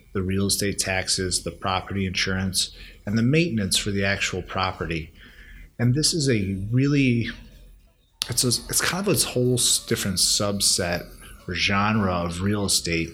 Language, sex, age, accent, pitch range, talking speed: English, male, 30-49, American, 90-115 Hz, 150 wpm